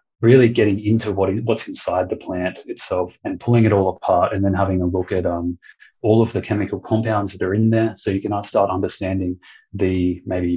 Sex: male